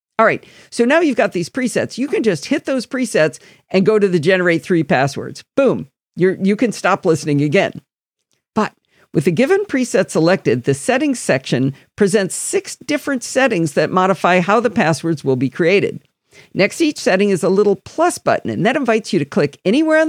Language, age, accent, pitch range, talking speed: English, 50-69, American, 155-245 Hz, 195 wpm